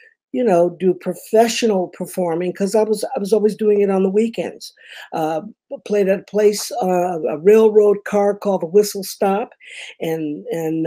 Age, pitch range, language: 50-69, 175-220 Hz, English